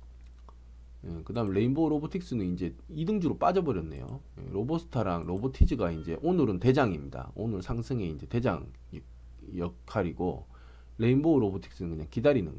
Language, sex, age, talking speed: English, male, 40-59, 100 wpm